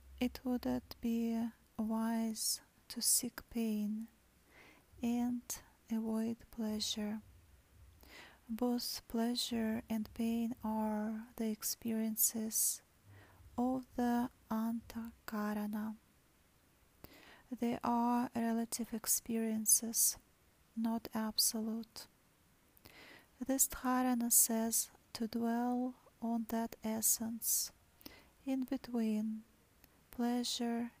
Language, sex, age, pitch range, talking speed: English, female, 30-49, 220-245 Hz, 75 wpm